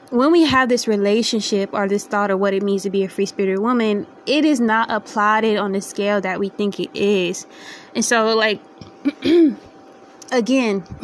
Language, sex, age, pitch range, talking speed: English, female, 20-39, 190-225 Hz, 185 wpm